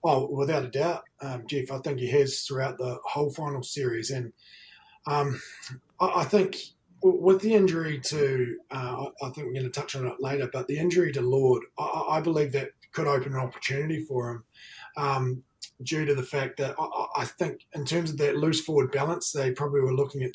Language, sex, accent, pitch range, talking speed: English, male, Australian, 125-145 Hz, 200 wpm